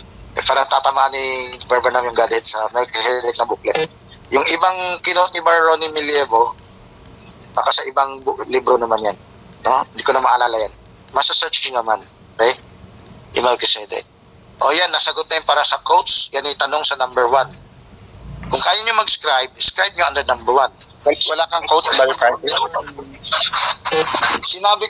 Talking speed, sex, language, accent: 155 wpm, male, Filipino, native